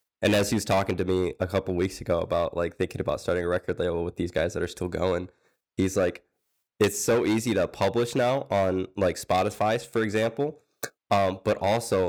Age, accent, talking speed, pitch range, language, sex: 20-39, American, 210 wpm, 95-105 Hz, English, male